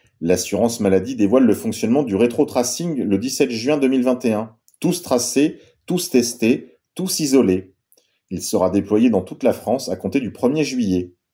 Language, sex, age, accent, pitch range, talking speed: French, male, 40-59, French, 100-145 Hz, 155 wpm